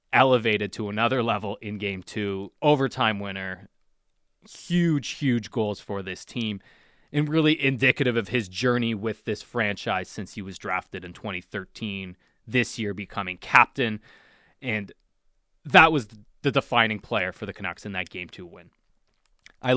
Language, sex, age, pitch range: English, male, 20-39, 105-130 Hz